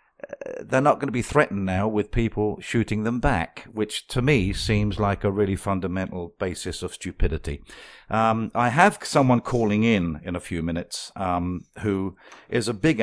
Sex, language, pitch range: male, English, 85-110 Hz